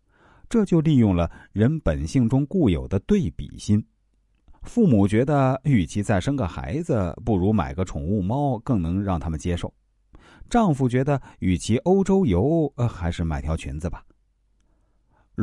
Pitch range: 85-140 Hz